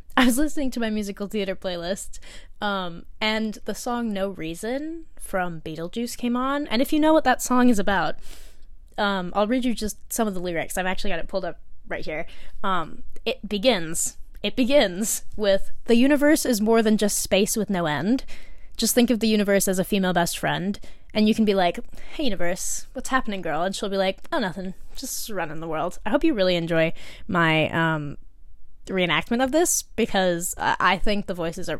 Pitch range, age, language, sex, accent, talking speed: 175-230 Hz, 10-29, English, female, American, 205 wpm